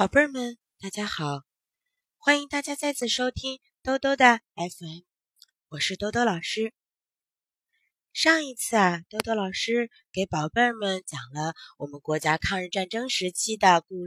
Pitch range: 170-250 Hz